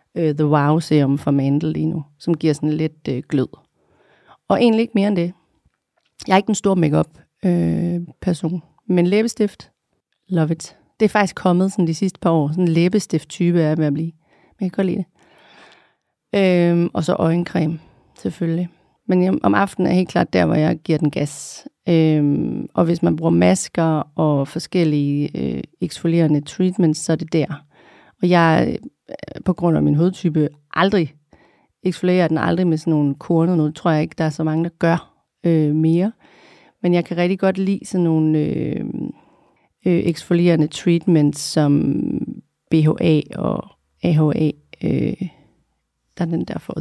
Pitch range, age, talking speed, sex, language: 150-180 Hz, 40-59, 175 wpm, female, Danish